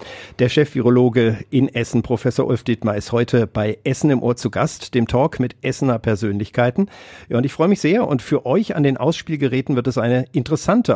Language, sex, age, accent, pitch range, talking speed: German, male, 50-69, German, 110-140 Hz, 205 wpm